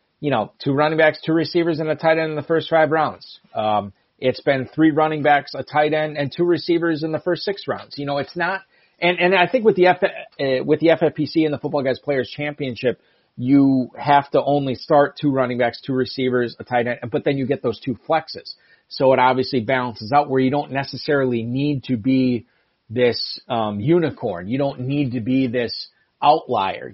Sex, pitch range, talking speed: male, 125-155 Hz, 215 wpm